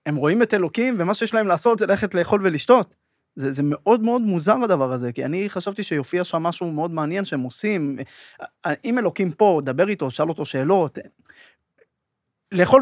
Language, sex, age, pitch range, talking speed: Hebrew, male, 20-39, 145-200 Hz, 180 wpm